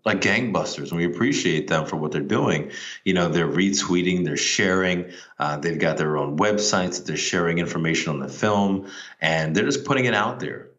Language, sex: English, male